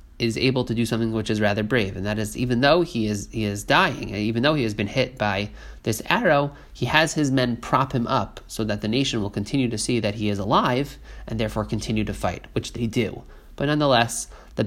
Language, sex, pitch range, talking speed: English, male, 105-130 Hz, 240 wpm